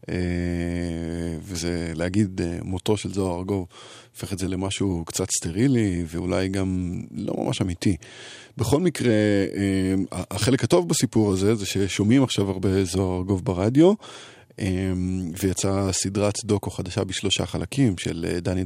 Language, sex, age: Hebrew, male, 20-39